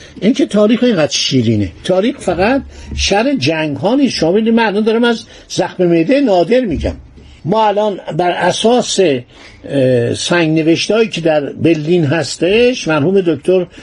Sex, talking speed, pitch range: male, 135 wpm, 145-195 Hz